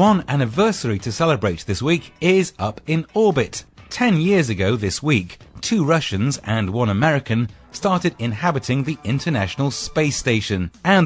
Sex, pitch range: male, 115-170 Hz